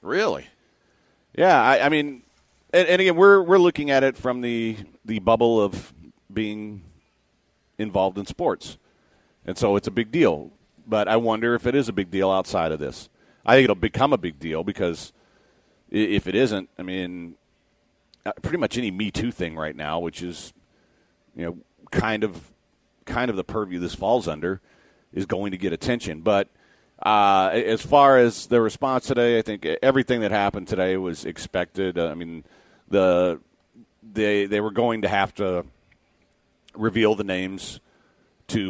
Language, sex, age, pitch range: English, male, 40-59, 90-110 Hz